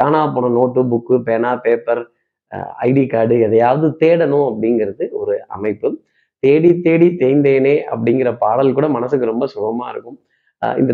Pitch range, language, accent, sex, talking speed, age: 125-170 Hz, Tamil, native, male, 130 wpm, 30-49